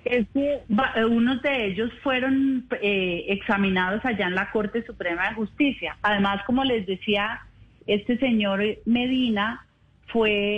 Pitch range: 195-235 Hz